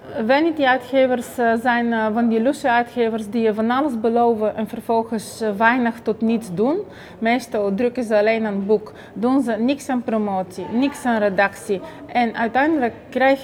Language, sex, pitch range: Dutch, female, 200-235 Hz